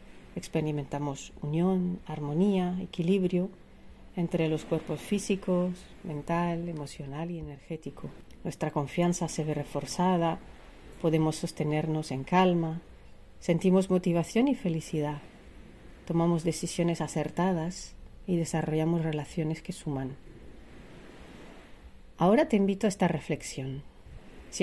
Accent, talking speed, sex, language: Spanish, 95 wpm, female, Spanish